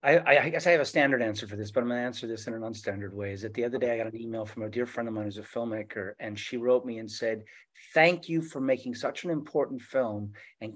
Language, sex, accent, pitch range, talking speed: English, male, American, 110-135 Hz, 295 wpm